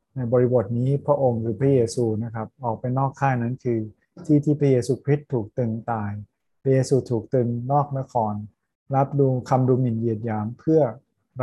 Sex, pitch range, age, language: male, 115-135 Hz, 20-39, Thai